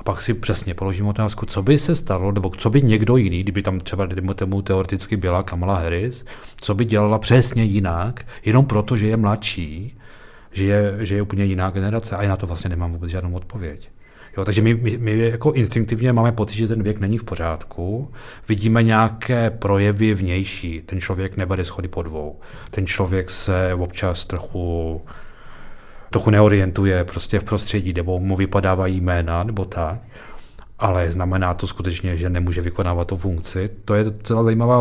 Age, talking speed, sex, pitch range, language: 40-59, 170 wpm, male, 95-115 Hz, Czech